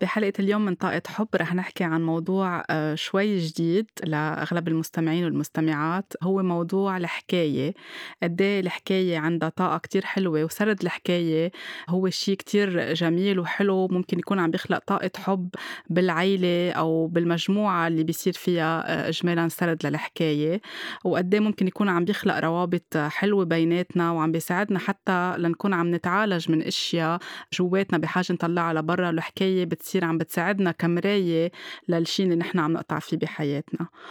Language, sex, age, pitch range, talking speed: Arabic, female, 20-39, 165-190 Hz, 135 wpm